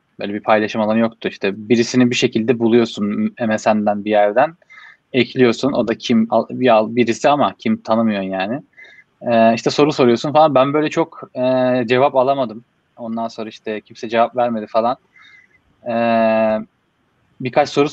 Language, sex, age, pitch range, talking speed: Turkish, male, 20-39, 110-130 Hz, 145 wpm